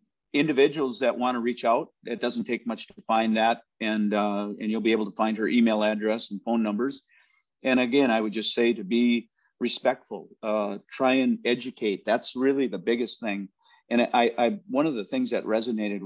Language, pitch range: English, 105-130 Hz